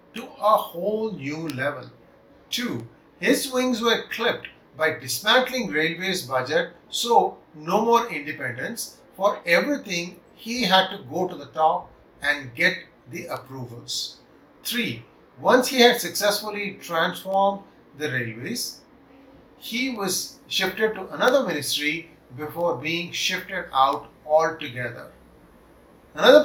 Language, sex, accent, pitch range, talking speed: English, male, Indian, 145-210 Hz, 115 wpm